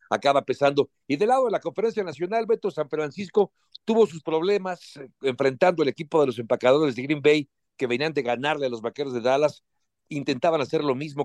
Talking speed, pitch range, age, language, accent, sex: 195 wpm, 130-175 Hz, 60-79, Spanish, Mexican, male